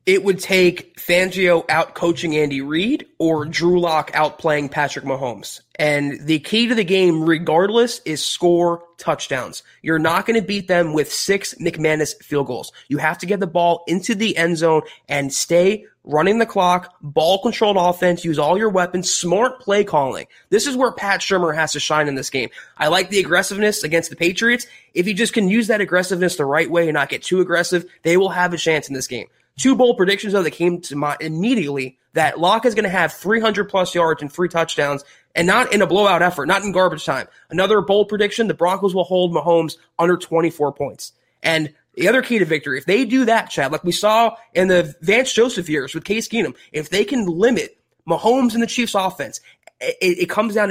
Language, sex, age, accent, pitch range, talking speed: English, male, 20-39, American, 160-200 Hz, 210 wpm